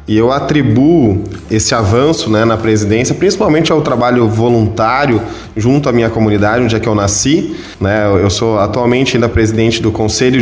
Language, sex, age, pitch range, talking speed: Portuguese, male, 20-39, 110-135 Hz, 165 wpm